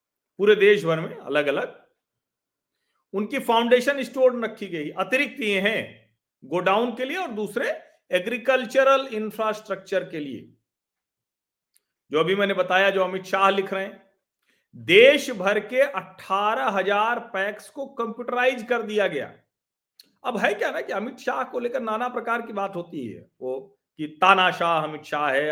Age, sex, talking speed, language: 40-59, male, 150 wpm, Hindi